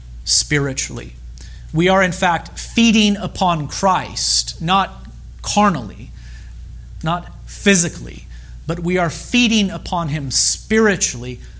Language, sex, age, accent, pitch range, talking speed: English, male, 40-59, American, 115-165 Hz, 100 wpm